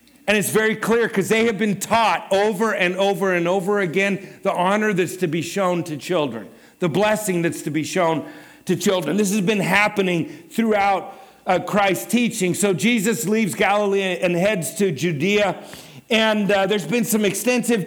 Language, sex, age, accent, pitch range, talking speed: English, male, 50-69, American, 180-220 Hz, 180 wpm